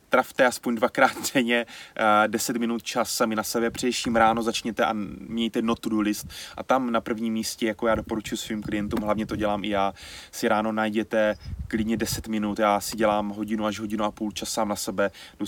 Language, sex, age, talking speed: Czech, male, 20-39, 205 wpm